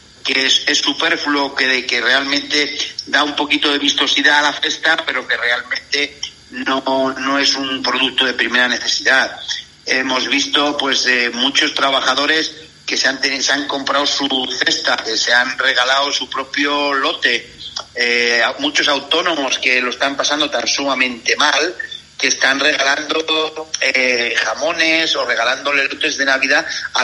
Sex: male